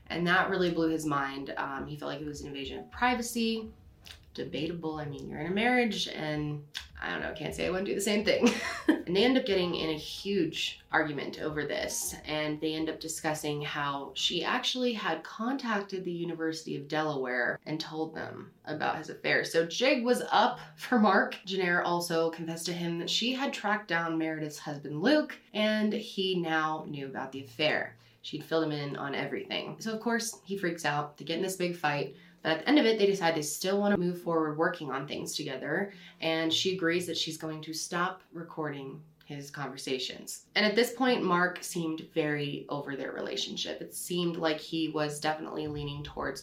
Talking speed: 200 wpm